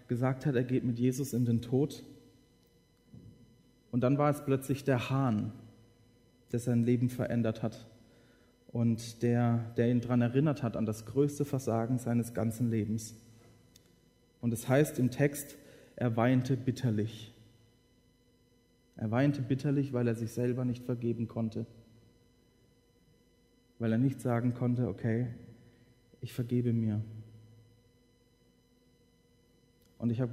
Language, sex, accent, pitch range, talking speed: Dutch, male, German, 115-130 Hz, 130 wpm